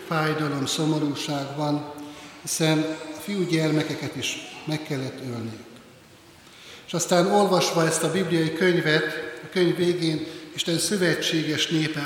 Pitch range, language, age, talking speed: 140-165 Hz, Hungarian, 60-79, 115 wpm